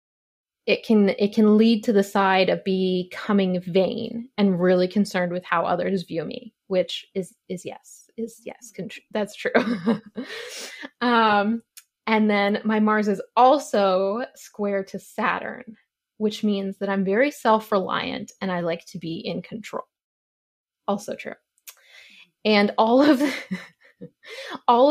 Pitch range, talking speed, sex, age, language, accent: 190-225 Hz, 140 wpm, female, 20-39, English, American